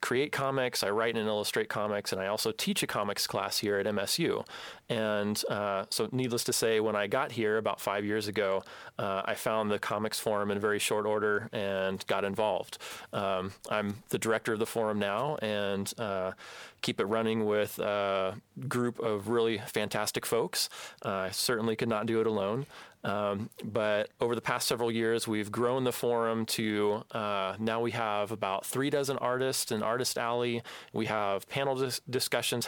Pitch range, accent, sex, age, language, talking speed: 105-120 Hz, American, male, 30-49, English, 185 wpm